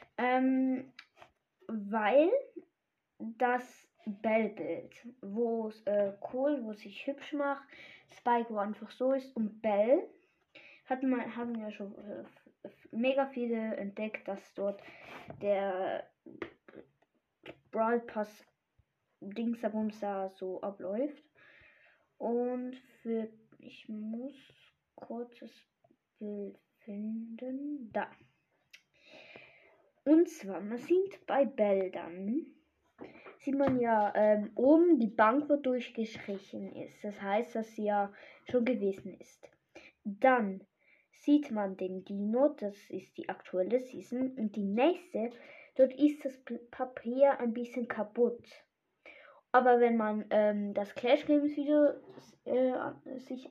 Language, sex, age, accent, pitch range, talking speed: German, female, 10-29, German, 210-270 Hz, 110 wpm